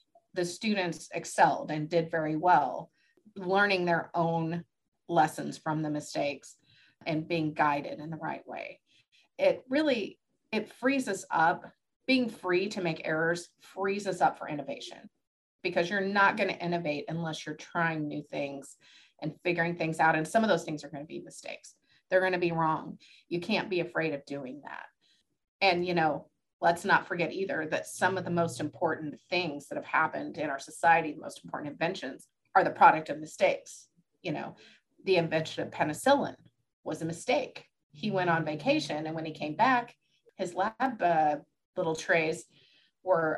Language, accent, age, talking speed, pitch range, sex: English, American, 30-49, 175 wpm, 155-185 Hz, female